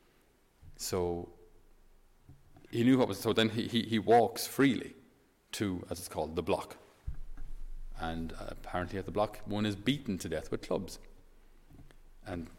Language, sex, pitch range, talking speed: English, male, 90-115 Hz, 155 wpm